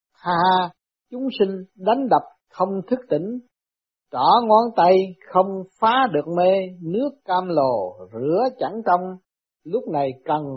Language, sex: Vietnamese, male